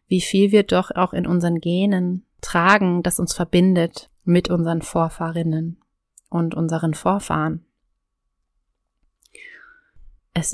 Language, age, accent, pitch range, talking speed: German, 30-49, German, 170-200 Hz, 110 wpm